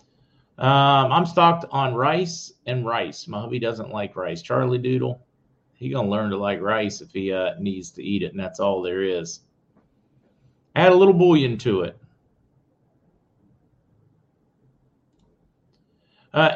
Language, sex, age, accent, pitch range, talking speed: English, male, 40-59, American, 105-135 Hz, 140 wpm